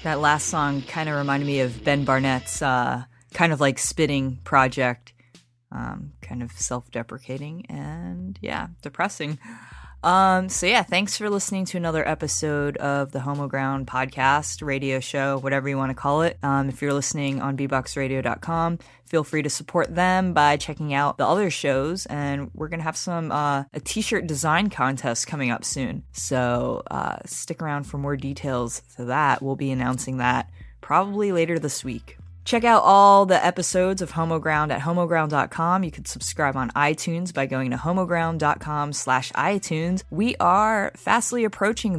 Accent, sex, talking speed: American, female, 165 wpm